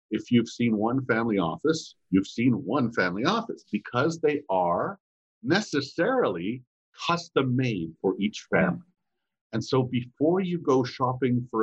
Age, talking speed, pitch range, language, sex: 50-69, 135 wpm, 110-155 Hz, English, male